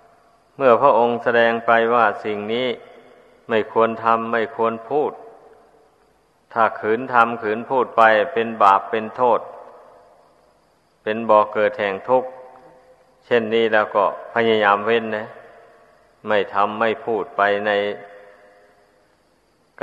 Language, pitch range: Thai, 110-125 Hz